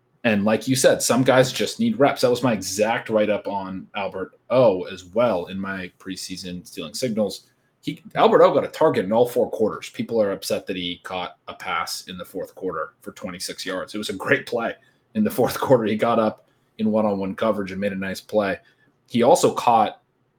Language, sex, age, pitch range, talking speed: English, male, 30-49, 105-140 Hz, 210 wpm